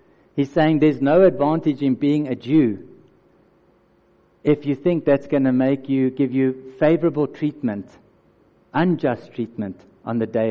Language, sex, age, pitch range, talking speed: English, male, 60-79, 125-150 Hz, 150 wpm